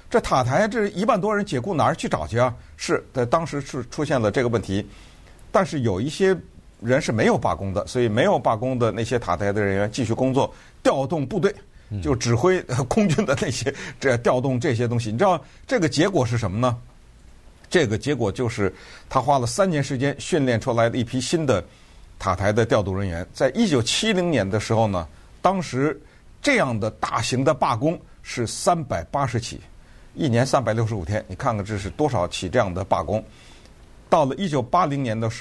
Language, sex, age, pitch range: Chinese, male, 50-69, 100-140 Hz